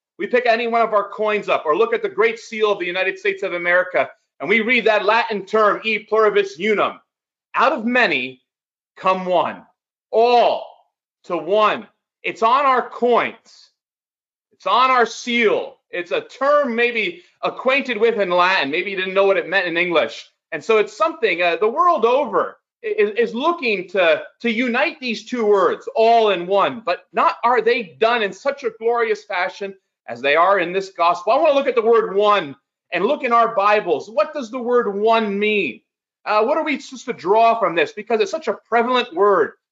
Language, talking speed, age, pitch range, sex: English, 200 wpm, 30-49, 200-315 Hz, male